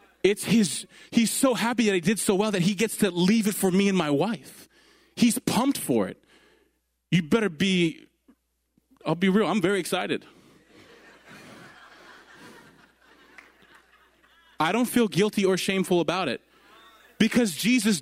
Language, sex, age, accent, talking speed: English, male, 20-39, American, 145 wpm